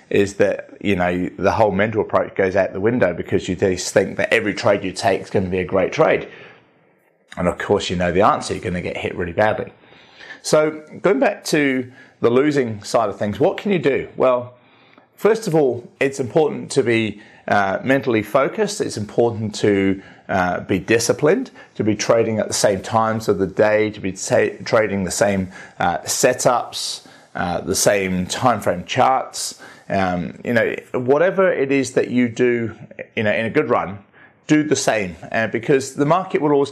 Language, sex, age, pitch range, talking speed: English, male, 30-49, 100-135 Hz, 195 wpm